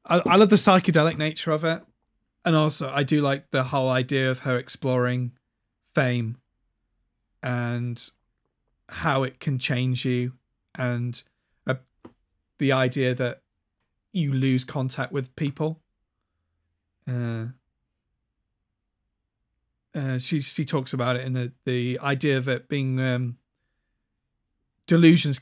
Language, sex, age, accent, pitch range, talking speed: English, male, 30-49, British, 120-135 Hz, 125 wpm